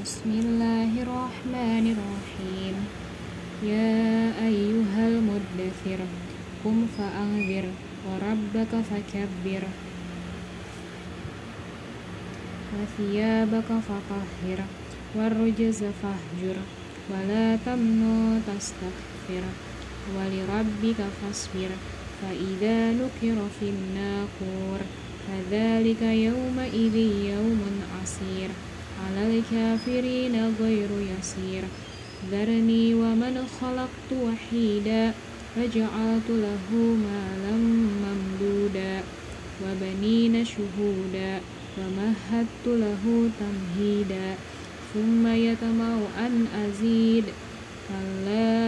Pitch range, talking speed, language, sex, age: 190-225 Hz, 60 wpm, Indonesian, female, 20-39